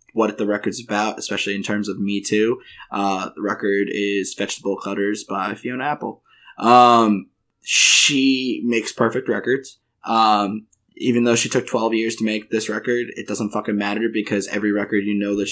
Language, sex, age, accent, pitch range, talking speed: English, male, 20-39, American, 100-110 Hz, 175 wpm